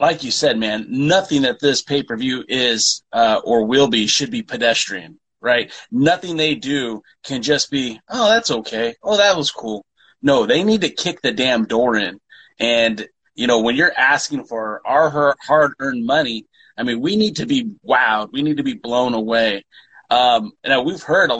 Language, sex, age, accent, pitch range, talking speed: English, male, 30-49, American, 125-195 Hz, 190 wpm